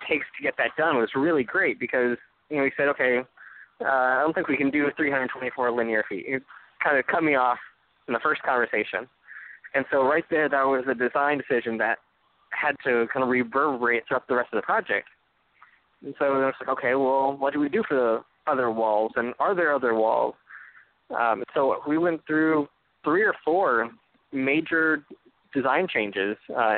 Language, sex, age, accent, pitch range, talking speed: English, male, 20-39, American, 125-160 Hz, 195 wpm